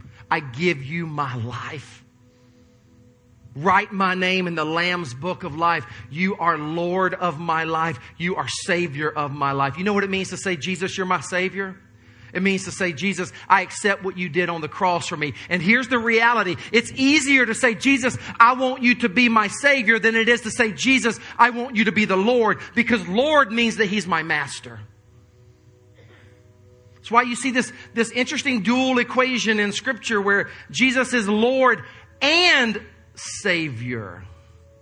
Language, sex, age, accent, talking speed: English, male, 40-59, American, 180 wpm